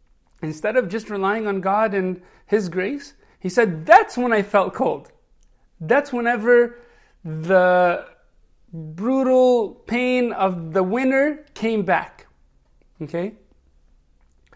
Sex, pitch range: male, 170-245 Hz